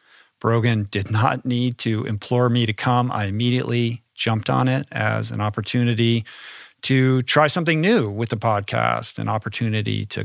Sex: male